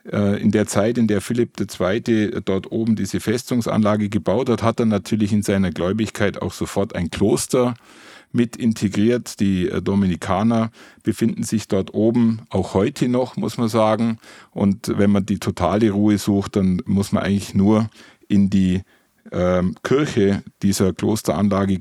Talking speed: 150 wpm